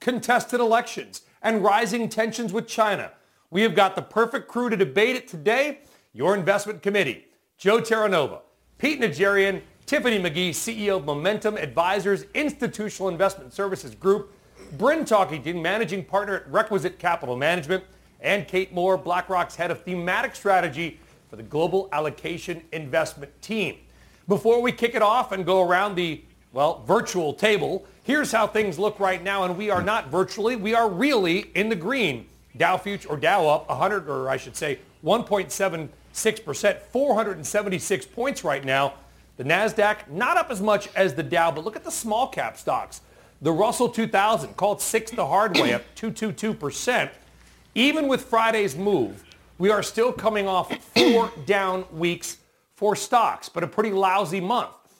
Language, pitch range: English, 180-225 Hz